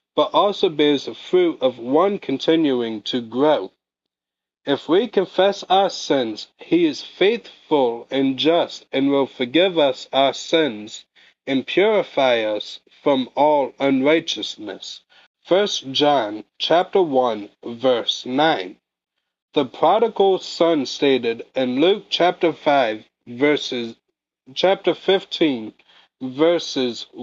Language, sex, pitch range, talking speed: English, male, 130-185 Hz, 110 wpm